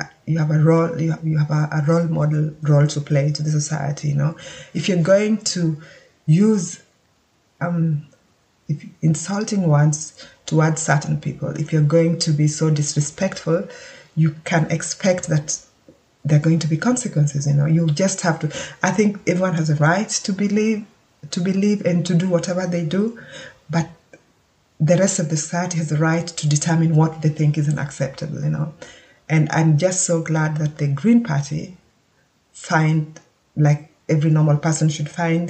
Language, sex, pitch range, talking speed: English, female, 150-175 Hz, 170 wpm